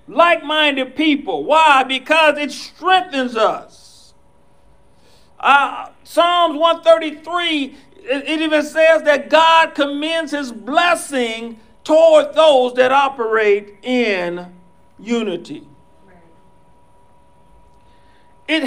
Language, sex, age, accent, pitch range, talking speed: English, male, 50-69, American, 245-315 Hz, 85 wpm